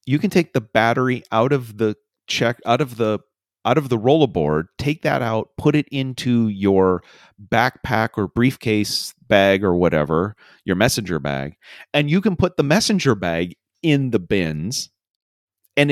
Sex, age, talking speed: male, 40-59, 160 wpm